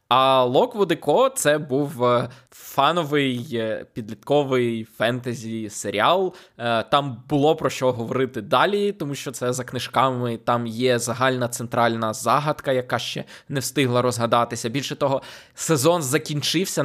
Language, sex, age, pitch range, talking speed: Ukrainian, male, 20-39, 120-145 Hz, 120 wpm